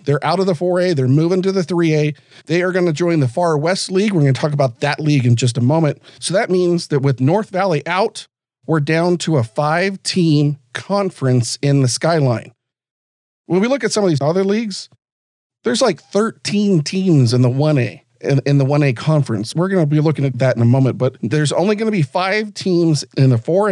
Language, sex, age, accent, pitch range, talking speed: English, male, 40-59, American, 135-180 Hz, 225 wpm